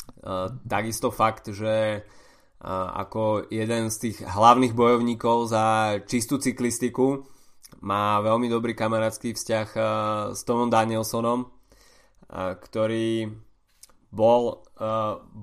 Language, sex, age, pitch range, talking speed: Slovak, male, 20-39, 105-120 Hz, 105 wpm